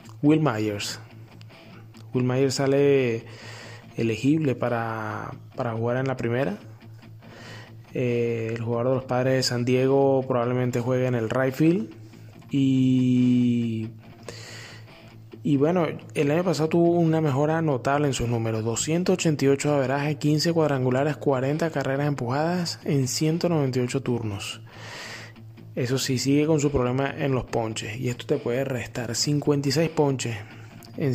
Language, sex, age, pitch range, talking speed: Spanish, male, 20-39, 115-140 Hz, 130 wpm